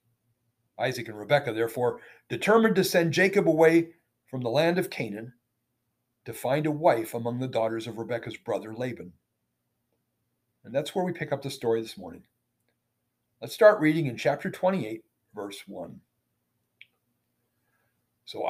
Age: 50-69